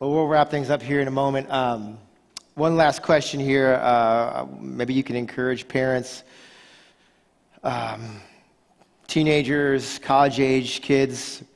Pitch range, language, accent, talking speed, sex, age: 125-150 Hz, English, American, 125 wpm, male, 40-59